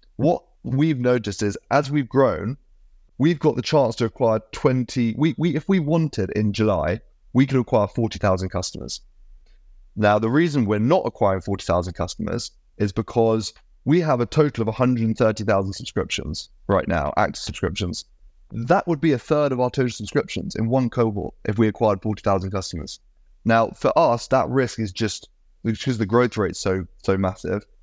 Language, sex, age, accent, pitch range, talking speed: English, male, 30-49, British, 105-135 Hz, 170 wpm